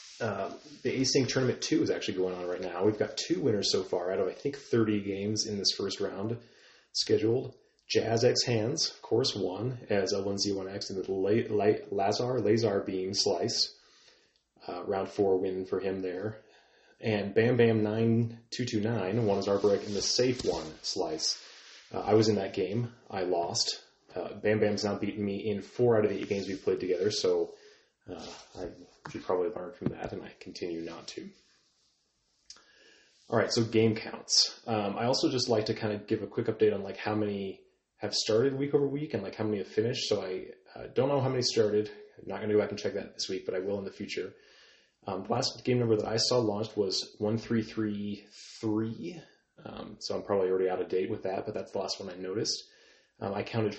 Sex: male